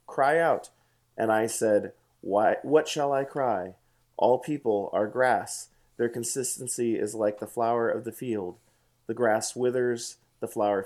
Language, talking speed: English, 155 wpm